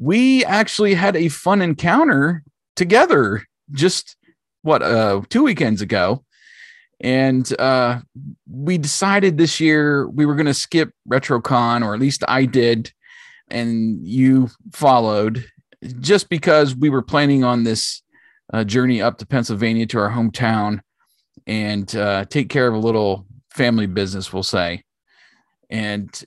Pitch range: 105-140 Hz